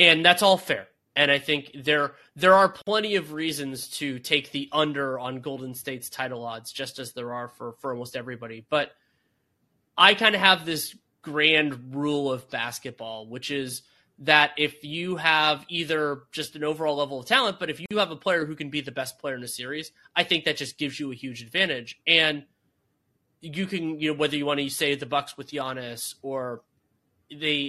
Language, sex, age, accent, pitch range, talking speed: English, male, 20-39, American, 130-160 Hz, 205 wpm